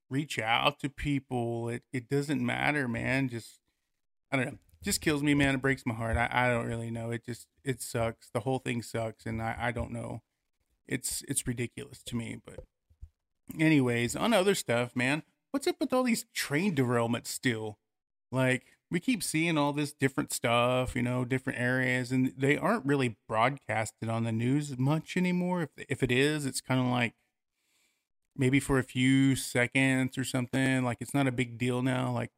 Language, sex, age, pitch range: English, male, 30-49, 115-135 Hz